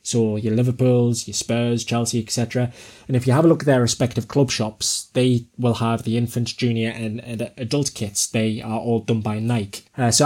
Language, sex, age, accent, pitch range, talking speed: English, male, 20-39, British, 110-125 Hz, 210 wpm